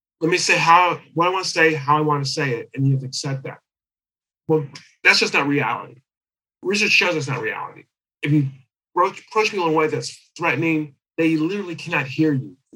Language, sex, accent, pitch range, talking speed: English, male, American, 130-165 Hz, 215 wpm